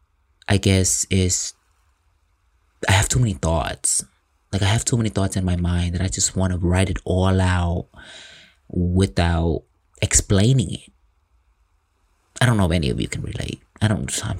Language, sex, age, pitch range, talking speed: English, male, 30-49, 80-105 Hz, 170 wpm